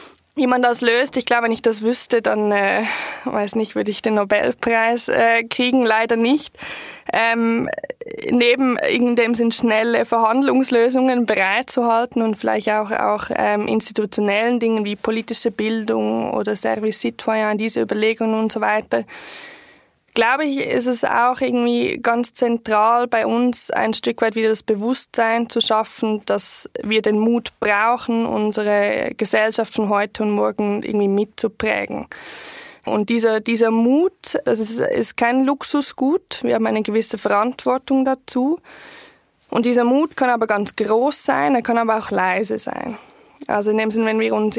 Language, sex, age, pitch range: German, female, 20-39, 215-245 Hz